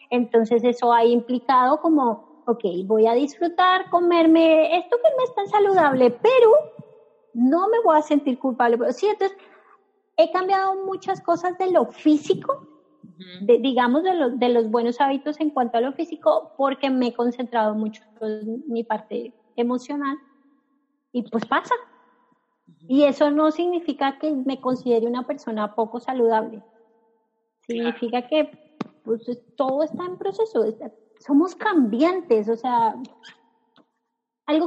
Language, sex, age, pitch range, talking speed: Spanish, female, 30-49, 230-310 Hz, 140 wpm